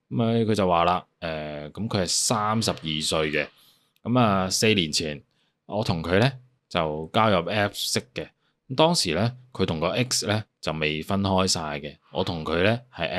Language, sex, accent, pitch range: Chinese, male, native, 85-115 Hz